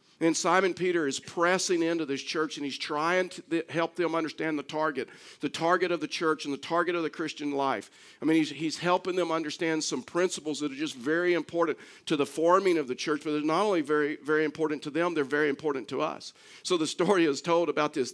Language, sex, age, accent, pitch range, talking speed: English, male, 50-69, American, 150-170 Hz, 235 wpm